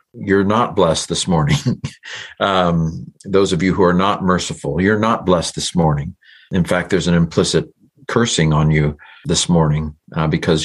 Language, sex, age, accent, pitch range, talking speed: English, male, 50-69, American, 80-100 Hz, 170 wpm